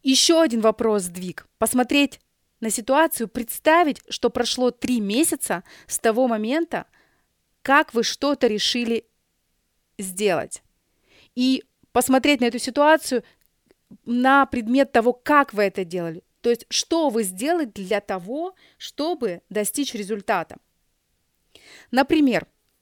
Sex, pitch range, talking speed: female, 210-270 Hz, 115 wpm